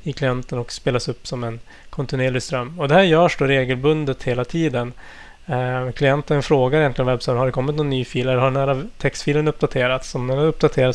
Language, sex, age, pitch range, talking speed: Swedish, male, 20-39, 125-150 Hz, 210 wpm